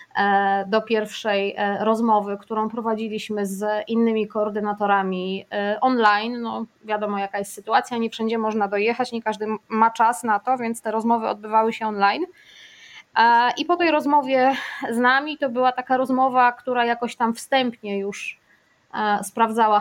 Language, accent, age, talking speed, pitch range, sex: Polish, native, 20-39, 140 wpm, 215-250 Hz, female